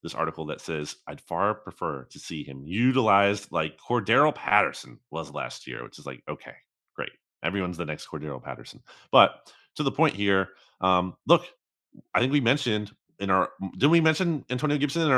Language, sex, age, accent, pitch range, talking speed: English, male, 30-49, American, 90-120 Hz, 180 wpm